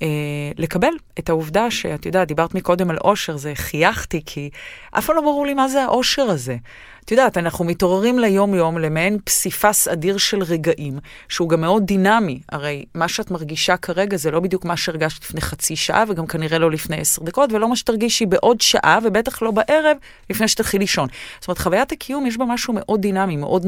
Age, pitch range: 30-49, 155-215 Hz